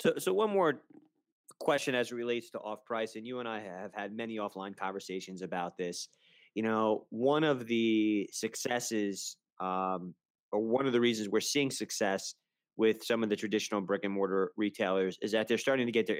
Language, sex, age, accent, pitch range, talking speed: English, male, 20-39, American, 100-120 Hz, 185 wpm